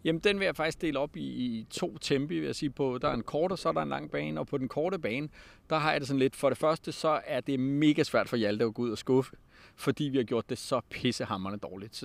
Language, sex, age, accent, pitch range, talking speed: Danish, male, 30-49, native, 125-160 Hz, 300 wpm